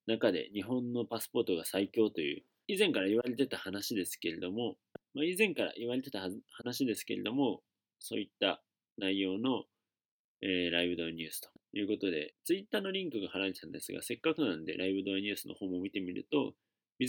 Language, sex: Japanese, male